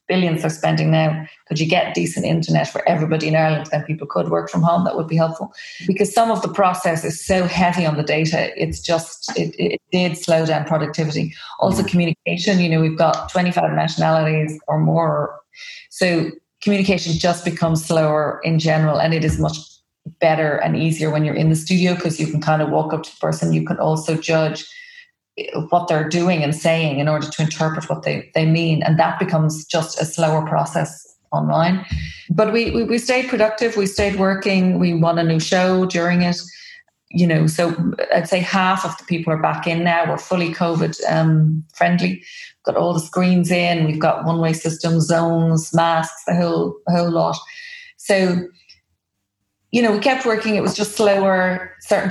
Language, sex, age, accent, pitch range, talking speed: English, female, 30-49, Irish, 160-185 Hz, 190 wpm